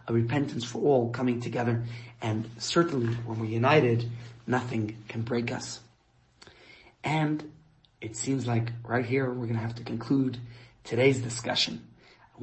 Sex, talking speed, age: male, 145 wpm, 30-49